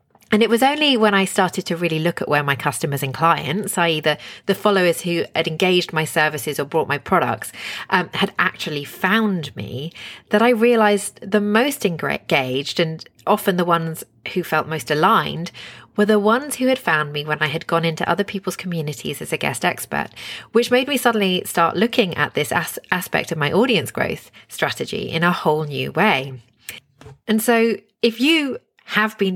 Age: 30-49